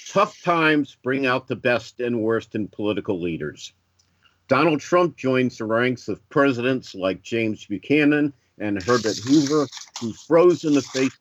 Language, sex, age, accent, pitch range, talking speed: English, male, 50-69, American, 105-140 Hz, 155 wpm